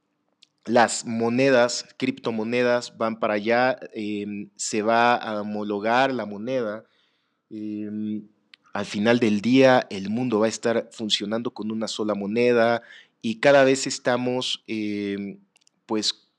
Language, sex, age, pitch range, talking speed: Spanish, male, 30-49, 110-130 Hz, 120 wpm